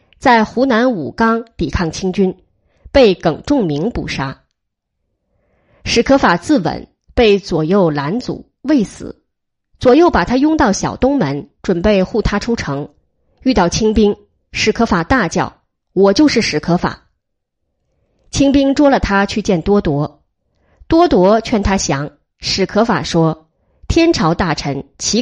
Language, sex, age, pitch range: Chinese, female, 20-39, 160-250 Hz